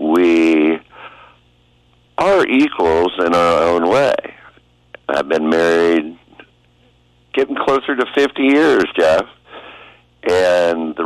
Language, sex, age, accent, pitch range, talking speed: English, male, 60-79, American, 80-125 Hz, 100 wpm